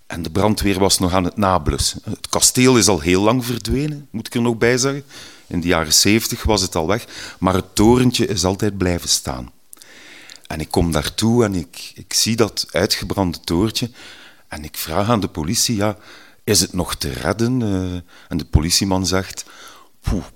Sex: male